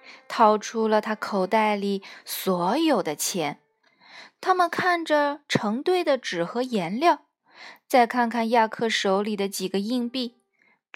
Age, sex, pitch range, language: 20-39, female, 210-315 Hz, Chinese